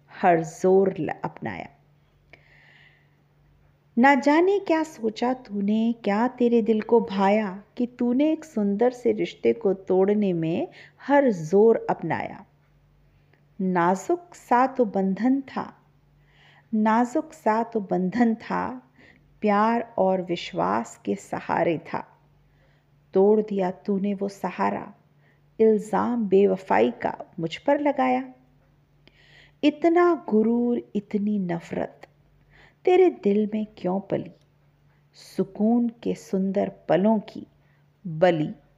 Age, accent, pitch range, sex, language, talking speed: 50-69, native, 150-235 Hz, female, Hindi, 105 wpm